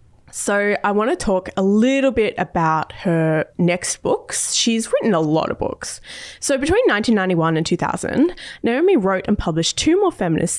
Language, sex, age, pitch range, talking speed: English, female, 20-39, 175-275 Hz, 170 wpm